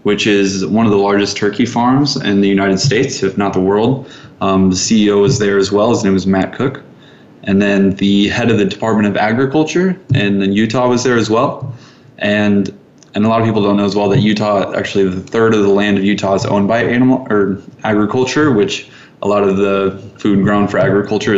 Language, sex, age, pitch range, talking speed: English, male, 20-39, 100-120 Hz, 220 wpm